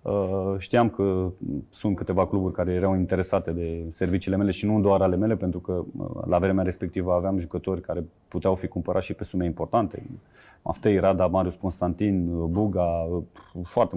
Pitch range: 90-105 Hz